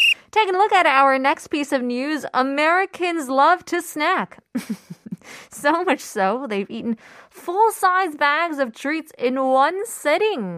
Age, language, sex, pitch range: 20-39, Korean, female, 205-295 Hz